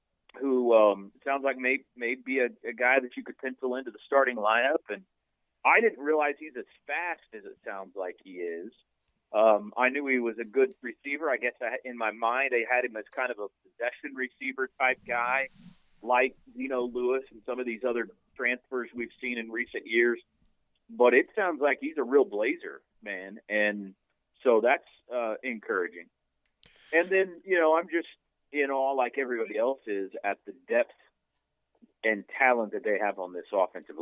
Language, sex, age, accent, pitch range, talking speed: English, male, 40-59, American, 115-140 Hz, 190 wpm